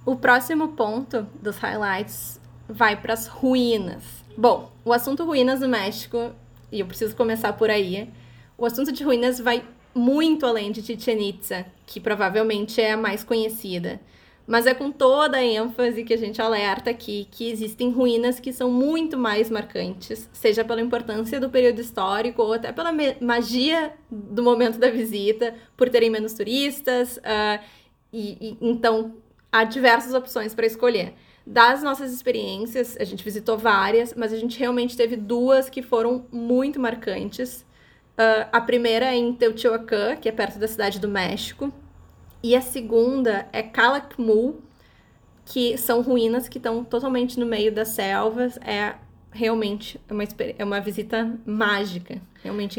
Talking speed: 150 wpm